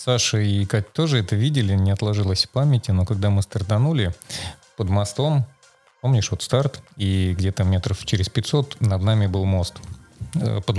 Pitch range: 95-115 Hz